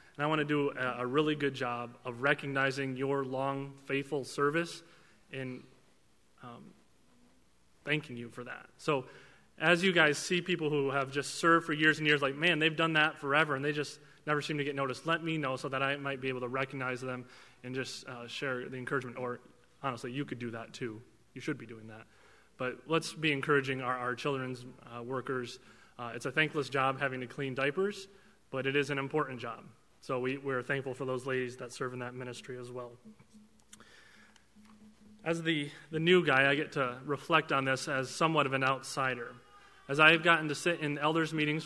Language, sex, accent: English, male, American